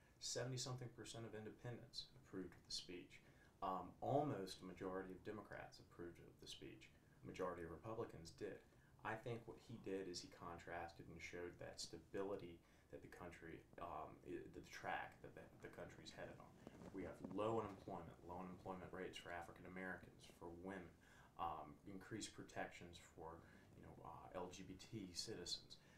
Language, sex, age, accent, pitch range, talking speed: English, male, 30-49, American, 90-115 Hz, 155 wpm